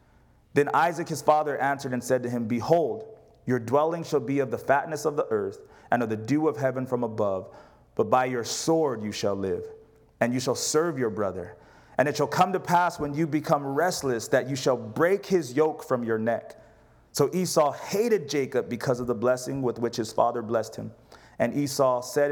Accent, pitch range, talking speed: American, 125-160 Hz, 205 wpm